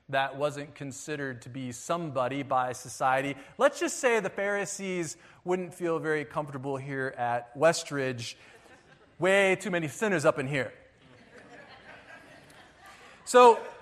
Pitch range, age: 155-245 Hz, 40-59